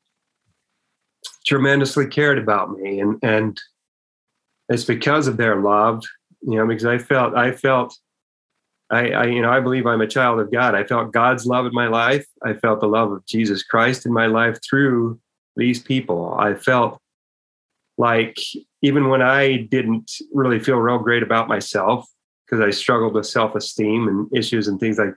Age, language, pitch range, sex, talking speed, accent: 30-49, English, 110-130 Hz, male, 170 wpm, American